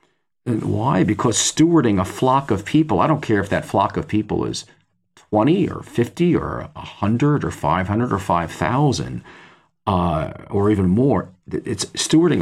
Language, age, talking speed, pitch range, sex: English, 40-59, 150 wpm, 95-135 Hz, male